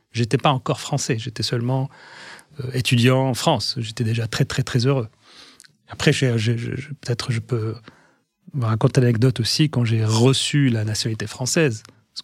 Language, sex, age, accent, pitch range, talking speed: French, male, 30-49, French, 115-140 Hz, 165 wpm